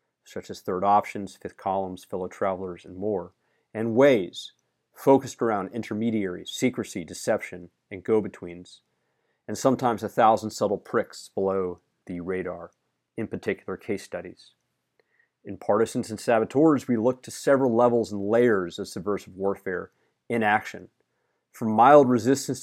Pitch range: 100-120 Hz